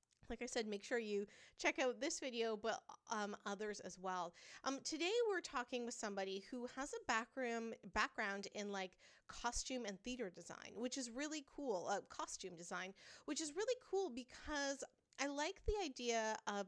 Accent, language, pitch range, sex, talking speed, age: American, English, 195-275 Hz, female, 175 wpm, 30-49